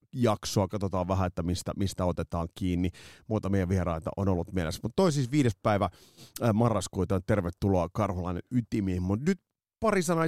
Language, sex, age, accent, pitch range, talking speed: Finnish, male, 30-49, native, 90-125 Hz, 160 wpm